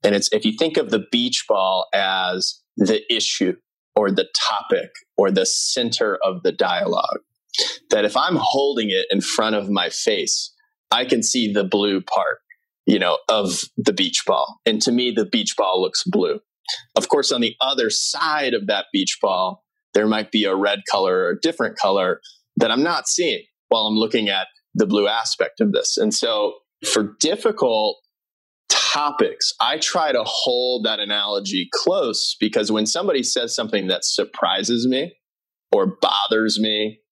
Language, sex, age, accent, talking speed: English, male, 30-49, American, 175 wpm